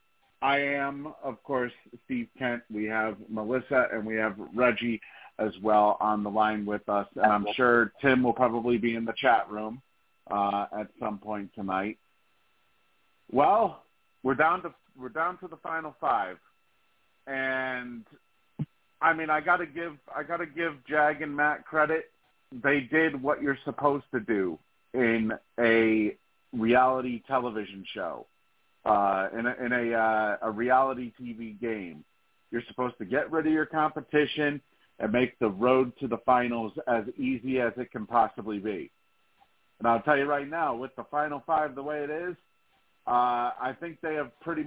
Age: 40-59